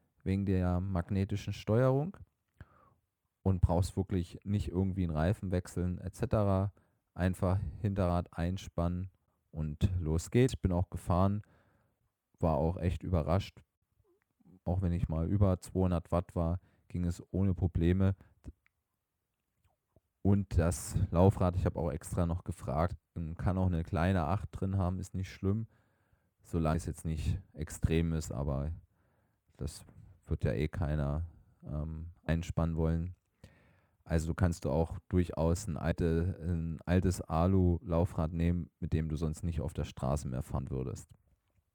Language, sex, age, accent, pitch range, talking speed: German, male, 30-49, German, 85-100 Hz, 135 wpm